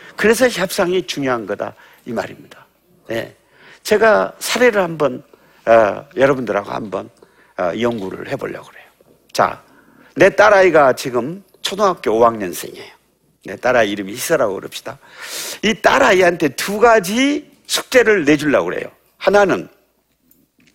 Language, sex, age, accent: Korean, male, 50-69, native